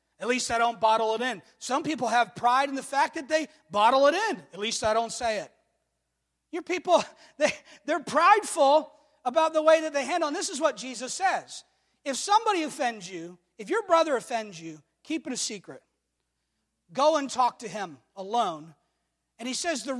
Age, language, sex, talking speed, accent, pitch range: 40-59, English, male, 195 wpm, American, 190-295 Hz